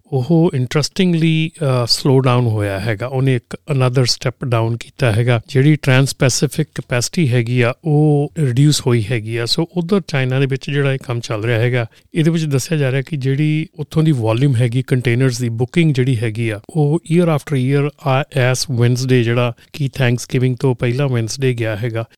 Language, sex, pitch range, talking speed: Punjabi, male, 120-145 Hz, 180 wpm